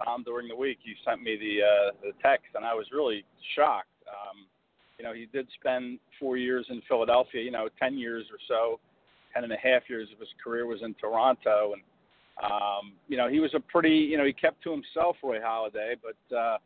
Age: 50-69